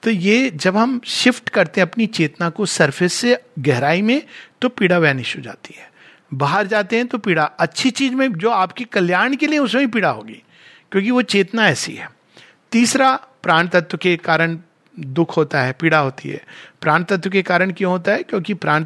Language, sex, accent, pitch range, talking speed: Hindi, male, native, 155-225 Hz, 195 wpm